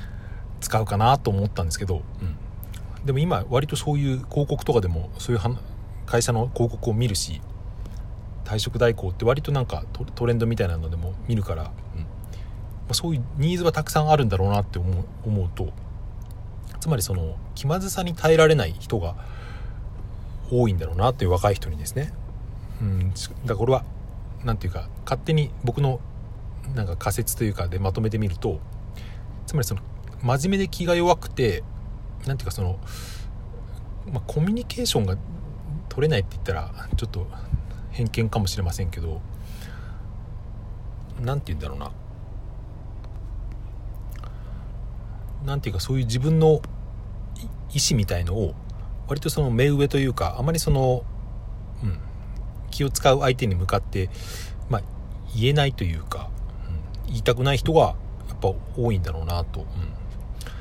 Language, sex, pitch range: Japanese, male, 100-120 Hz